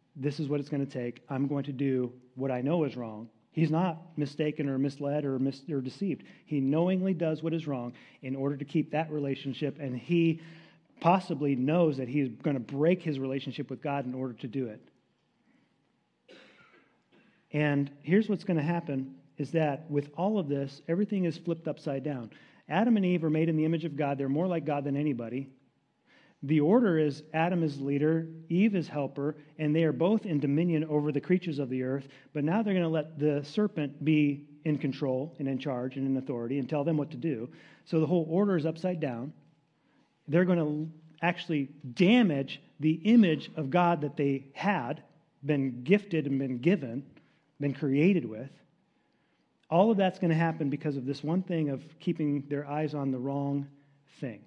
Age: 40-59